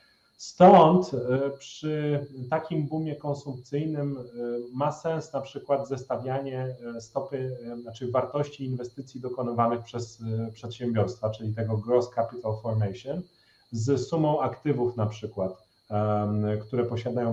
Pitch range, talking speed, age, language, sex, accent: 115-140 Hz, 100 wpm, 30-49, Polish, male, native